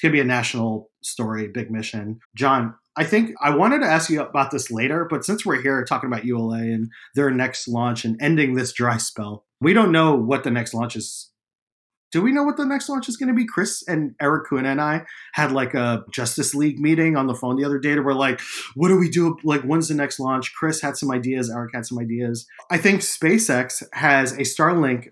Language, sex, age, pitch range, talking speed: English, male, 30-49, 120-160 Hz, 235 wpm